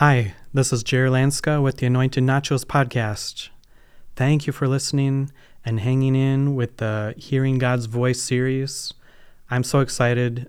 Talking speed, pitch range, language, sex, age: 150 wpm, 115-130 Hz, English, male, 30-49